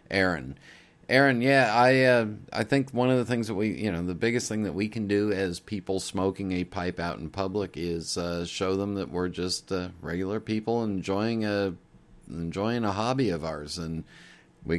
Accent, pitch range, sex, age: American, 90-110 Hz, male, 40-59